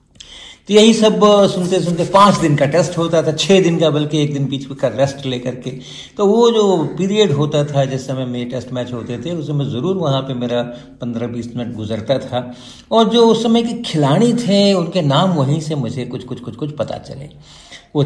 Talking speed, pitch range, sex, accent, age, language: 215 wpm, 125-165 Hz, male, native, 50-69, Hindi